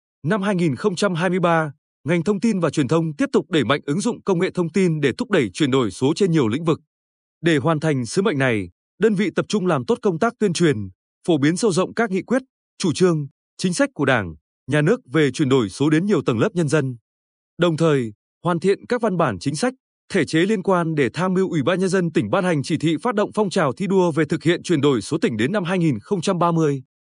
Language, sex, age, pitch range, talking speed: Vietnamese, male, 20-39, 145-195 Hz, 245 wpm